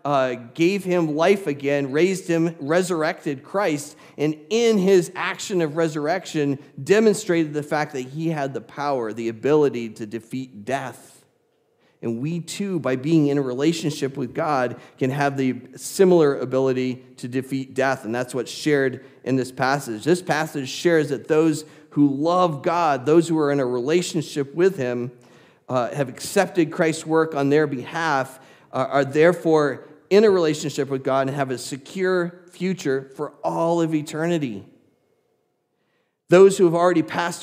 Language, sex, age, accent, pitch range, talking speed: English, male, 40-59, American, 135-170 Hz, 160 wpm